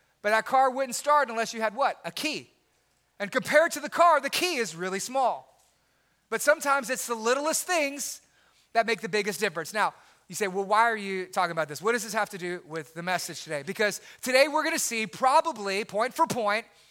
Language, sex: English, male